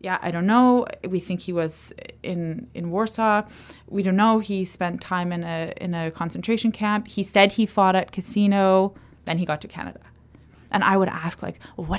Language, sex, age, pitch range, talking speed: English, female, 20-39, 165-210 Hz, 200 wpm